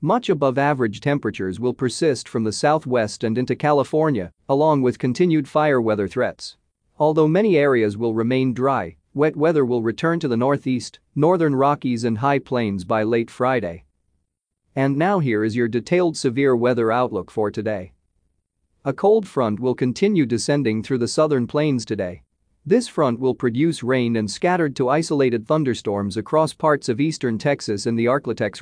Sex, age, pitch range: male, 40-59, 110-150 Hz